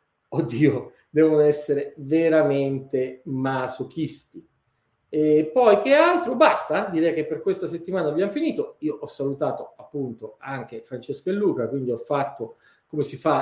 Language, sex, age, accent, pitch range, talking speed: Italian, male, 40-59, native, 135-195 Hz, 140 wpm